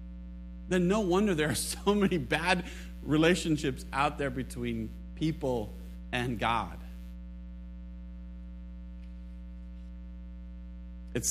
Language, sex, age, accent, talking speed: English, male, 40-59, American, 85 wpm